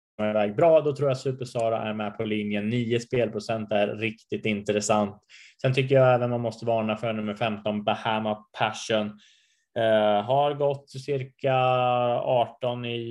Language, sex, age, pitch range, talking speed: Swedish, male, 20-39, 110-125 Hz, 160 wpm